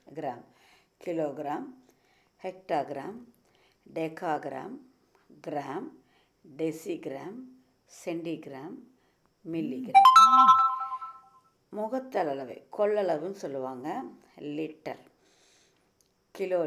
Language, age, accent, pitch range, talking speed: Tamil, 50-69, native, 160-225 Hz, 45 wpm